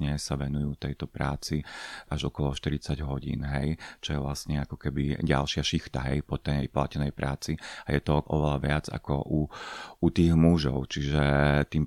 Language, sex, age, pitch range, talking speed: Slovak, male, 30-49, 70-80 Hz, 165 wpm